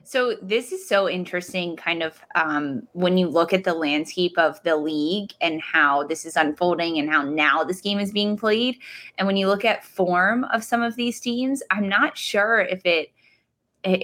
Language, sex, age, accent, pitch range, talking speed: English, female, 20-39, American, 170-200 Hz, 200 wpm